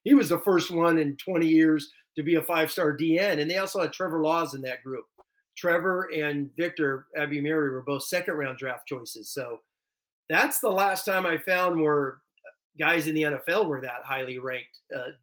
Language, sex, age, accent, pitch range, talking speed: English, male, 40-59, American, 140-180 Hz, 190 wpm